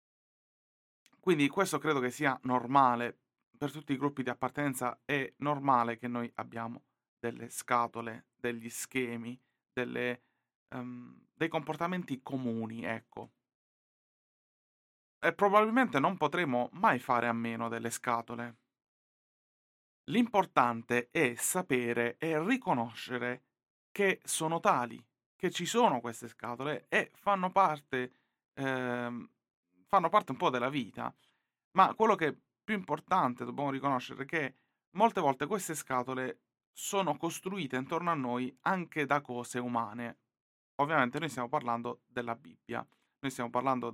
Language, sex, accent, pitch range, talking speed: Italian, male, native, 120-150 Hz, 120 wpm